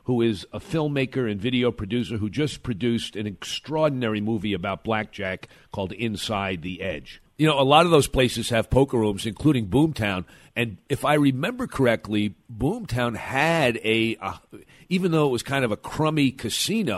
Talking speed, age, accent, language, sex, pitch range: 175 wpm, 50-69, American, English, male, 115-145 Hz